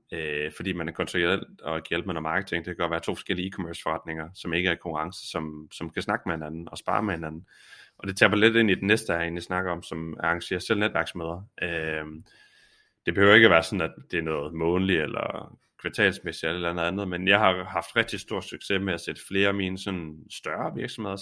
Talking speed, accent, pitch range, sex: 240 wpm, native, 80-95 Hz, male